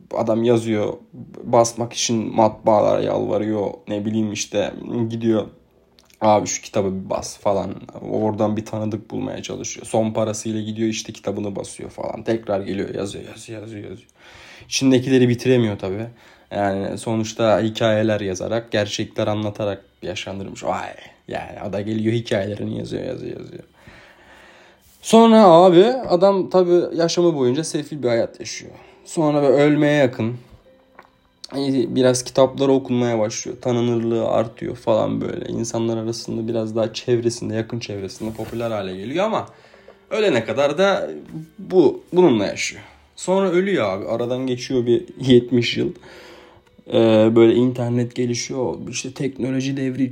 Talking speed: 125 wpm